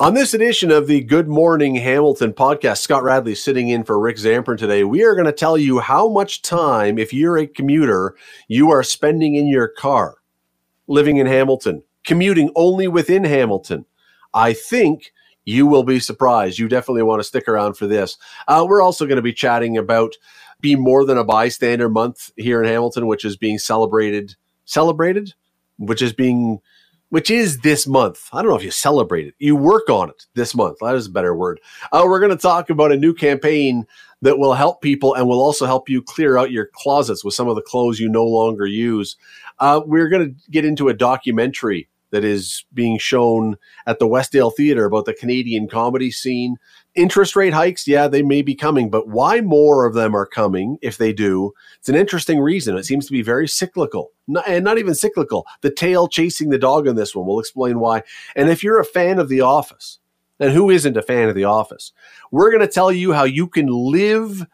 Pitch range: 115-165 Hz